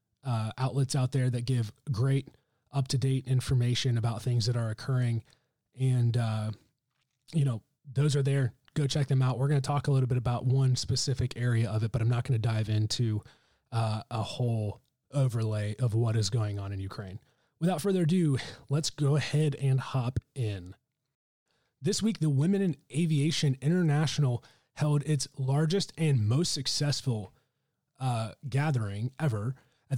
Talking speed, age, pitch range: 165 wpm, 30-49, 120-150 Hz